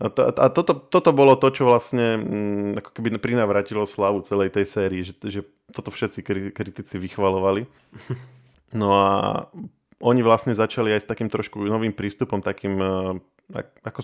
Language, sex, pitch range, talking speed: Slovak, male, 100-115 Hz, 145 wpm